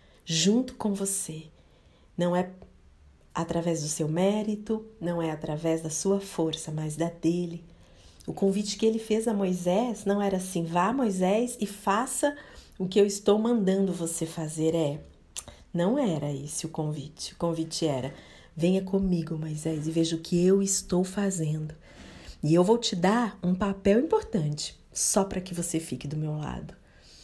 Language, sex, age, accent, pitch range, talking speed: Portuguese, female, 40-59, Brazilian, 160-195 Hz, 165 wpm